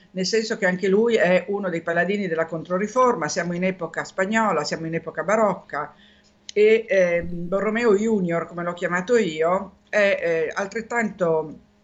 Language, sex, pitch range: Italian, female, 170-210 Hz